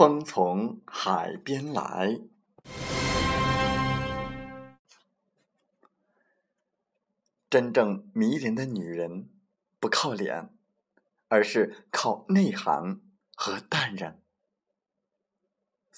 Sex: male